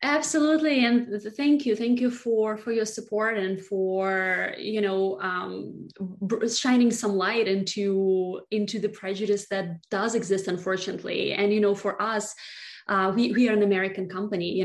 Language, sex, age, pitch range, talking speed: English, female, 20-39, 180-205 Hz, 160 wpm